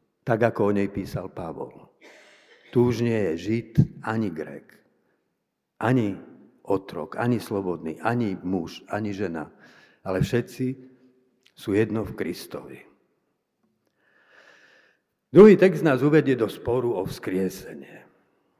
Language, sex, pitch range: Slovak, male, 105-135 Hz